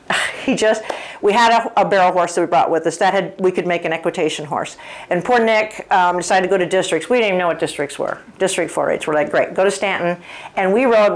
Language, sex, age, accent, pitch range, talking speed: English, female, 50-69, American, 170-210 Hz, 260 wpm